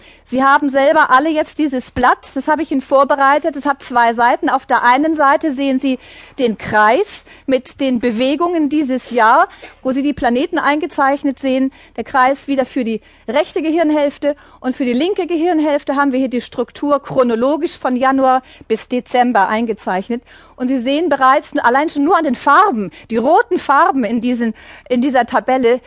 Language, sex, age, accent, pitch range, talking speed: German, female, 40-59, German, 240-295 Hz, 175 wpm